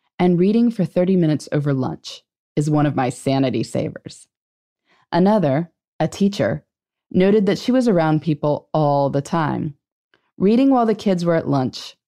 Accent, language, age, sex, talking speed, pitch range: American, English, 20-39, female, 160 wpm, 150-205 Hz